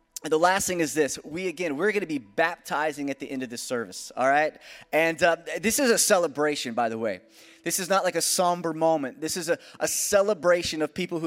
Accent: American